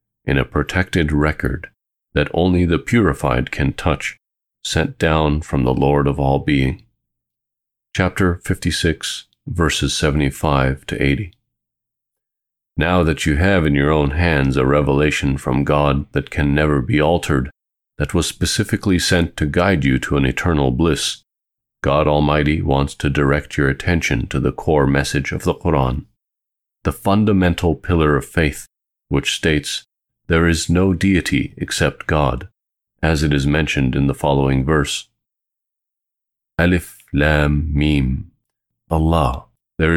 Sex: male